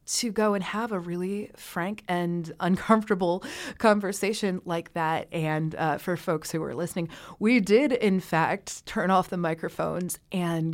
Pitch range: 160-195 Hz